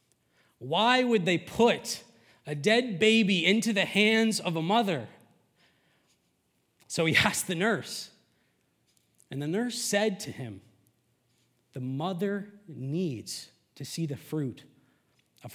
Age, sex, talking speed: 30-49, male, 125 wpm